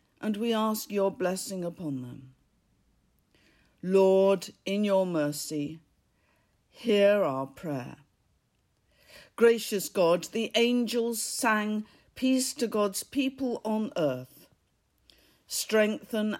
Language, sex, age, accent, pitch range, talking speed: English, female, 50-69, British, 170-215 Hz, 95 wpm